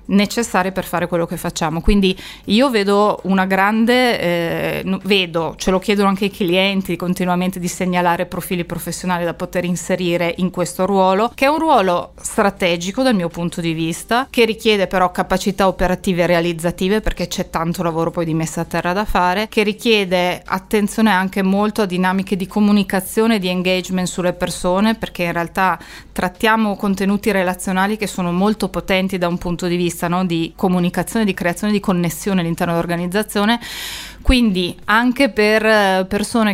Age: 20-39